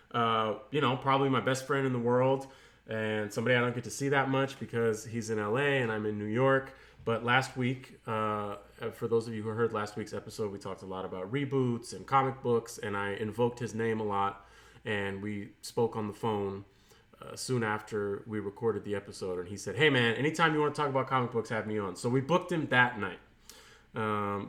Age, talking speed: 30-49, 230 wpm